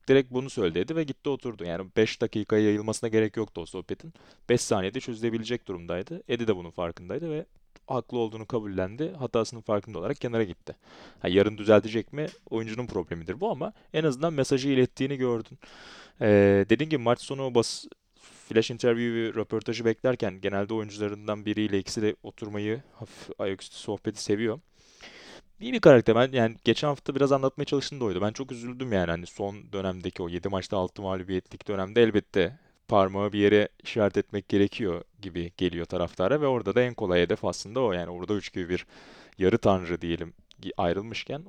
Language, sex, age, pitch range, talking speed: Turkish, male, 30-49, 95-120 Hz, 165 wpm